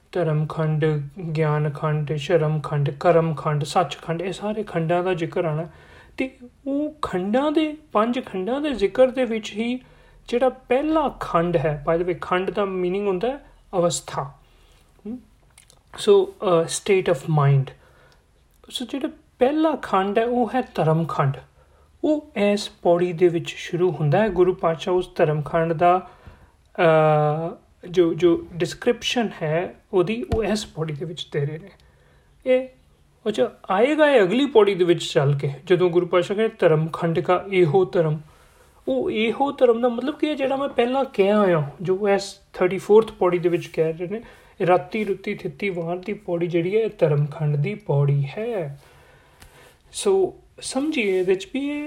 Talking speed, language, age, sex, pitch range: 140 wpm, Punjabi, 40-59, male, 165-235 Hz